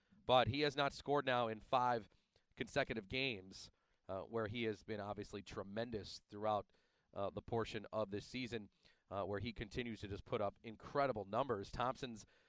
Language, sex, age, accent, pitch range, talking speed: English, male, 30-49, American, 110-145 Hz, 170 wpm